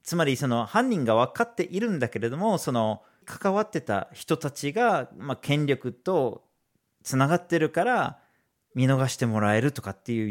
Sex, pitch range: male, 120-185 Hz